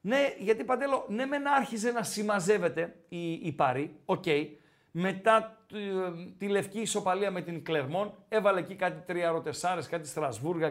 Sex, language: male, Greek